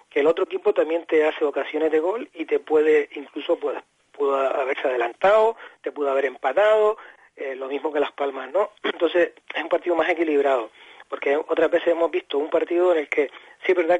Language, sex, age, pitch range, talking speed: Spanish, male, 30-49, 150-225 Hz, 200 wpm